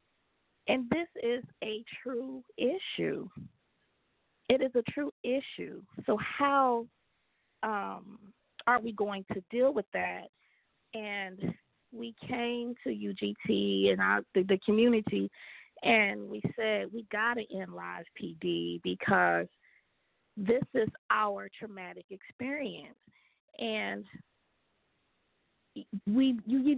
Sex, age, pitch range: female, 20-39, 205-260 Hz